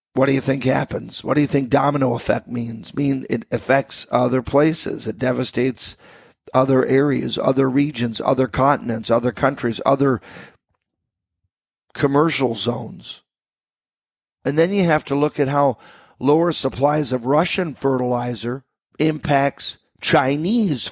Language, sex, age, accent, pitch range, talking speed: English, male, 50-69, American, 125-140 Hz, 125 wpm